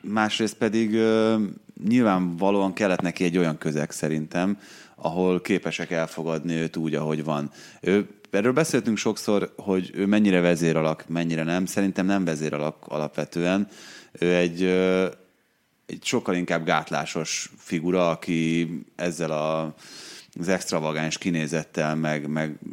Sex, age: male, 30-49